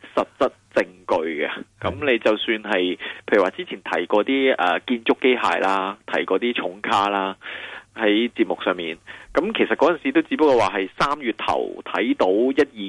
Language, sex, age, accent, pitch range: Chinese, male, 20-39, native, 100-125 Hz